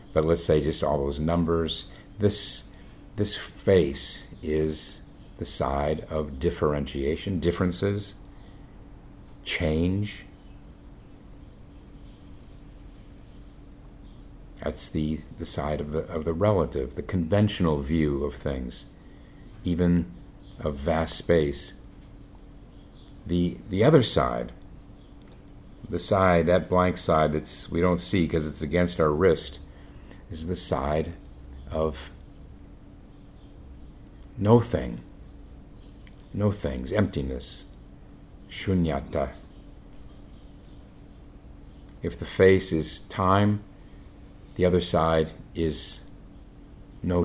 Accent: American